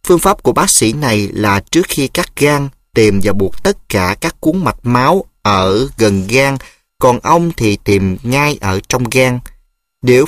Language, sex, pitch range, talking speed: Vietnamese, male, 105-145 Hz, 185 wpm